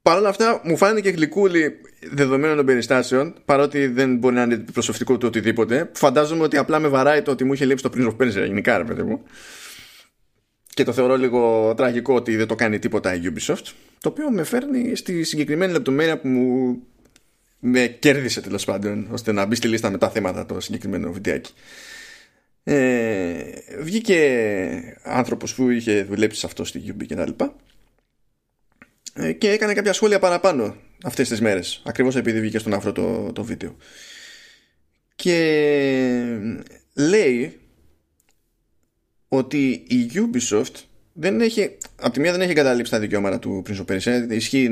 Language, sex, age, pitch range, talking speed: Greek, male, 20-39, 115-155 Hz, 155 wpm